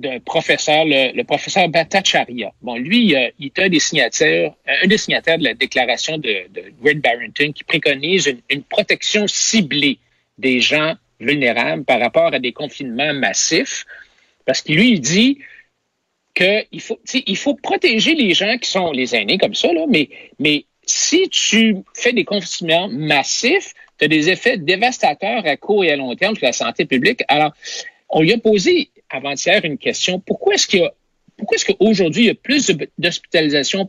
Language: French